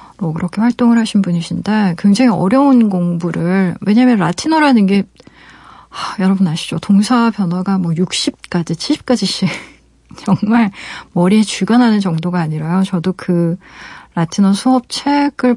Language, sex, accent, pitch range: Korean, female, native, 175-225 Hz